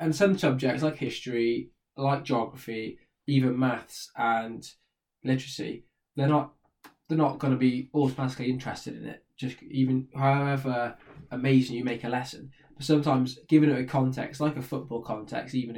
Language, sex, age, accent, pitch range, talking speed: English, male, 10-29, British, 120-140 Hz, 155 wpm